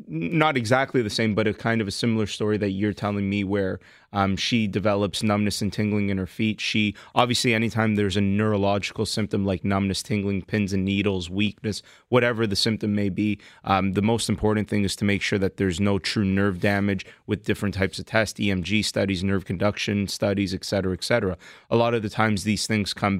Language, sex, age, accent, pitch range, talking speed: English, male, 20-39, American, 100-115 Hz, 210 wpm